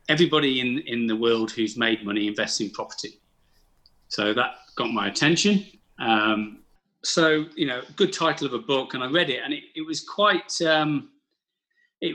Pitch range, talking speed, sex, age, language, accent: 110-175 Hz, 180 wpm, male, 40-59, English, British